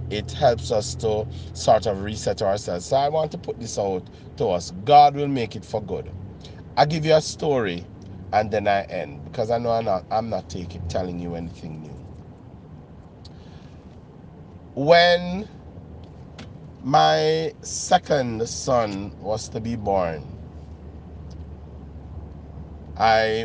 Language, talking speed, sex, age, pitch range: English, 135 wpm, male, 30-49, 85-110 Hz